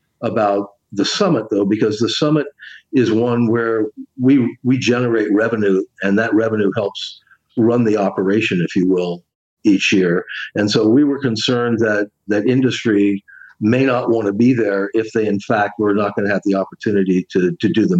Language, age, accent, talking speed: English, 50-69, American, 185 wpm